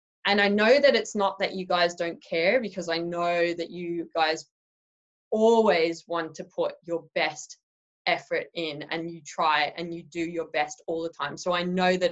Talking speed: 200 wpm